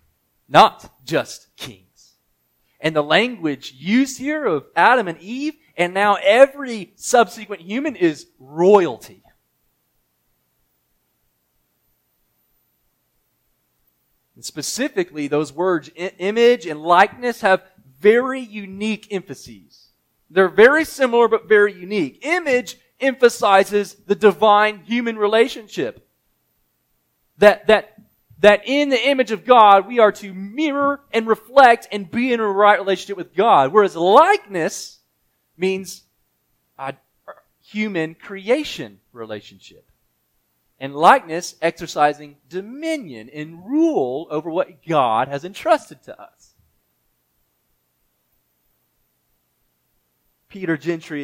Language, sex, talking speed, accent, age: English, male, 100 wpm, American, 30-49